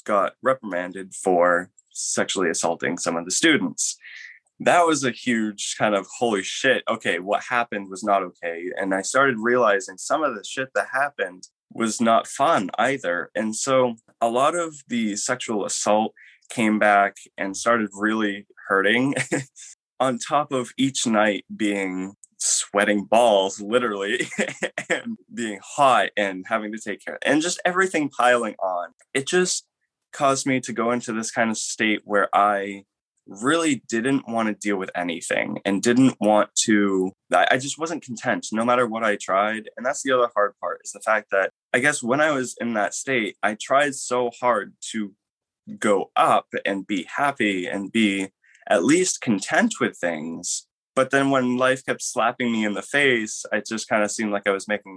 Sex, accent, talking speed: male, American, 175 wpm